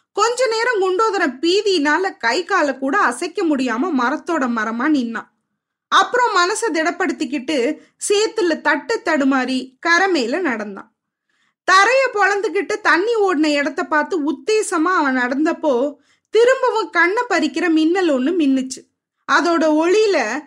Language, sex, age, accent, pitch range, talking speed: Tamil, female, 20-39, native, 285-380 Hz, 110 wpm